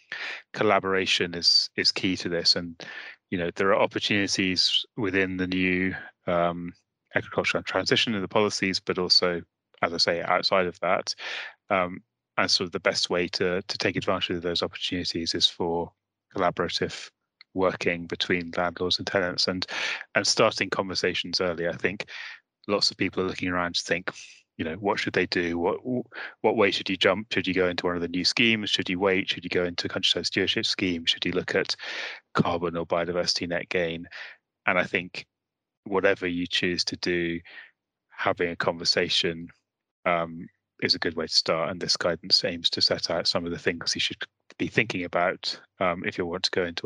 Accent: British